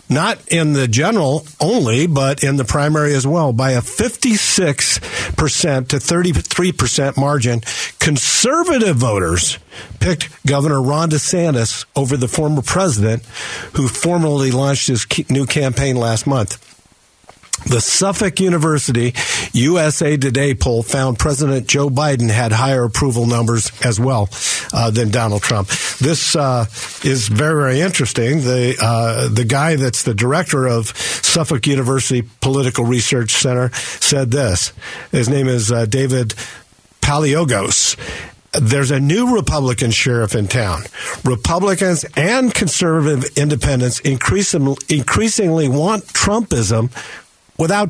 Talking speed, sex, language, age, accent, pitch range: 120 wpm, male, English, 50-69, American, 120-155 Hz